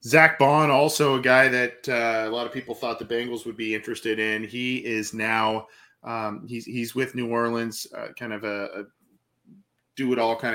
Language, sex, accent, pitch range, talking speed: English, male, American, 110-125 Hz, 205 wpm